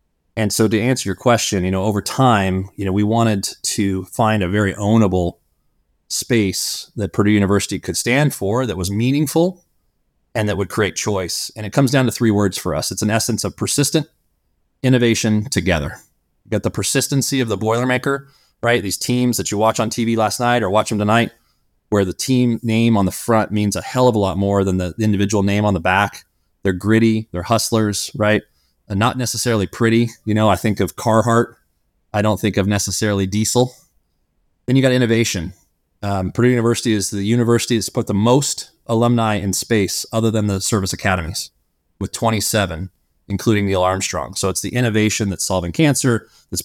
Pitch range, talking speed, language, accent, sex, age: 95-115 Hz, 190 wpm, English, American, male, 30-49